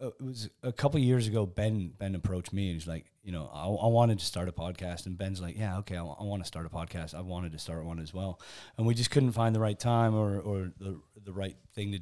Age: 30-49